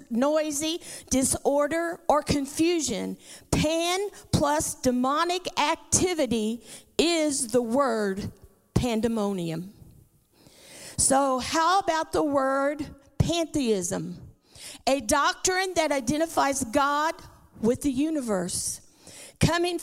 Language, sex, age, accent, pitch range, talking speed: English, female, 50-69, American, 235-310 Hz, 80 wpm